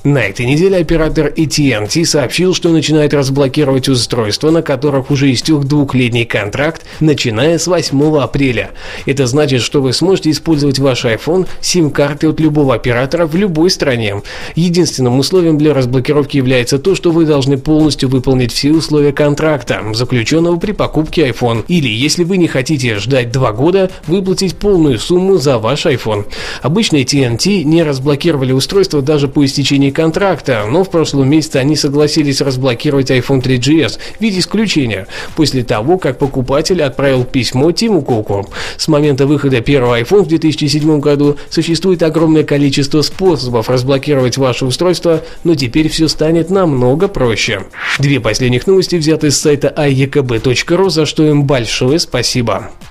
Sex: male